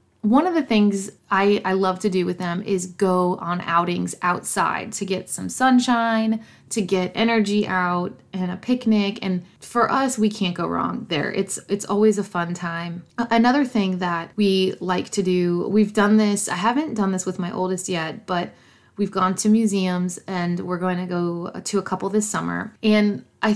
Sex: female